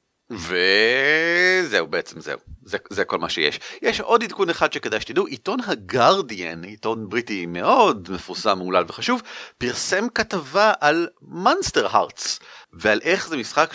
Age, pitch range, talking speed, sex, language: 40-59, 120-180 Hz, 135 wpm, male, Hebrew